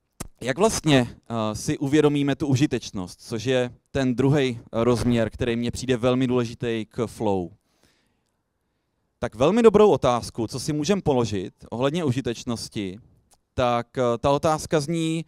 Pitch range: 120-160 Hz